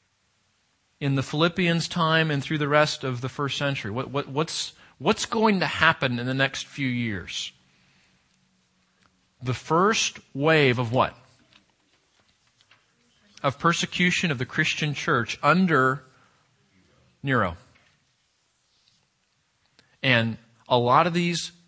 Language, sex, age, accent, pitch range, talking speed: English, male, 40-59, American, 125-175 Hz, 115 wpm